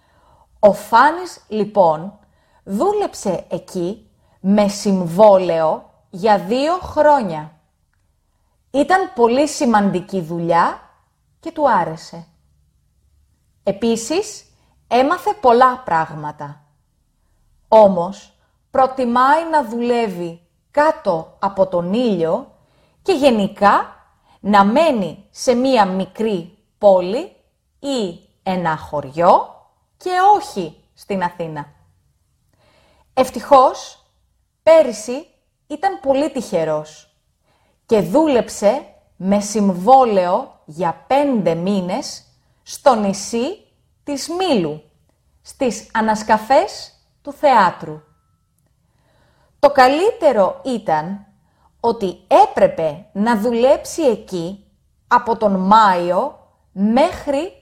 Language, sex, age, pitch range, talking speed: Greek, female, 30-49, 175-275 Hz, 80 wpm